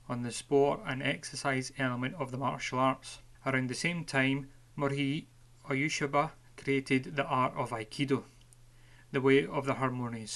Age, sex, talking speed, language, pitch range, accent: 30-49, male, 150 wpm, English, 125-145 Hz, British